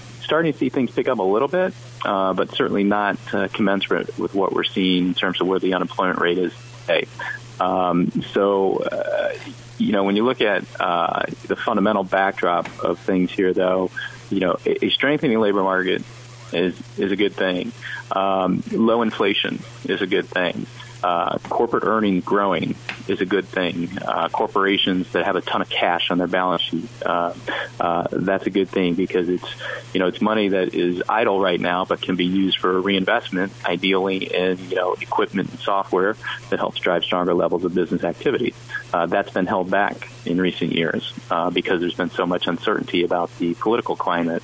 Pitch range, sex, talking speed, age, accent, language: 90-110 Hz, male, 190 wpm, 30-49, American, English